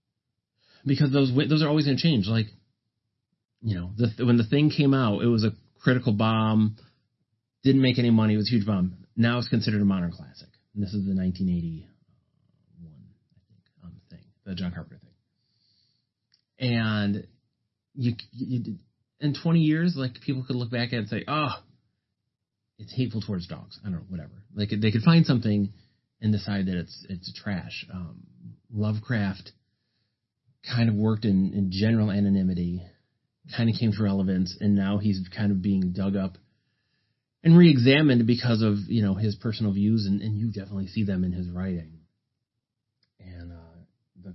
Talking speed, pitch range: 175 wpm, 95-120 Hz